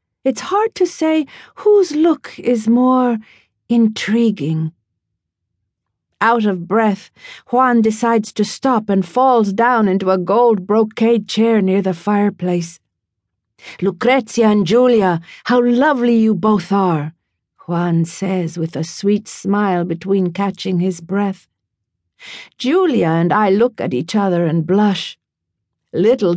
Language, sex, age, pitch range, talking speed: English, female, 50-69, 175-235 Hz, 125 wpm